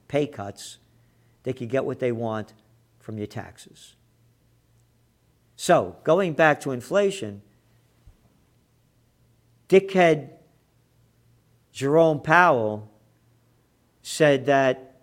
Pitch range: 120-195 Hz